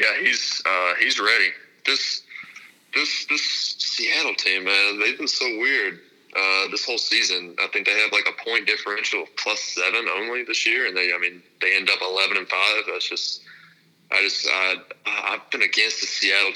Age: 20-39